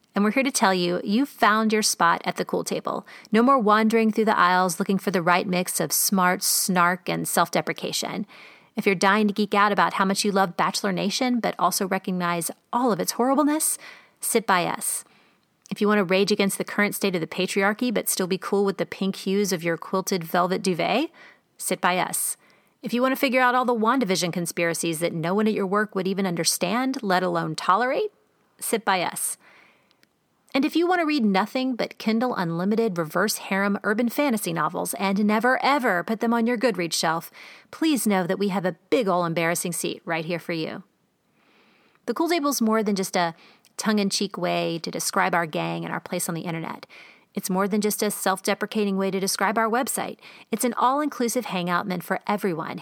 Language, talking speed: English, 205 wpm